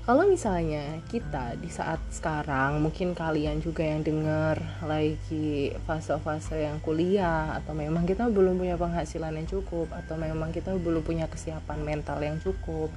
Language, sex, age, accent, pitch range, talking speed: Indonesian, female, 30-49, native, 150-180 Hz, 150 wpm